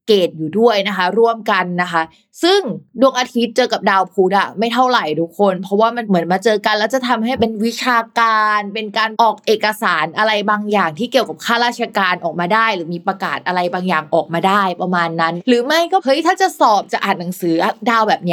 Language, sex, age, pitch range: Thai, female, 20-39, 190-245 Hz